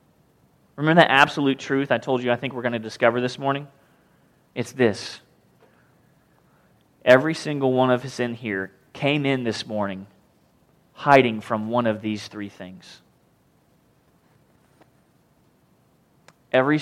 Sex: male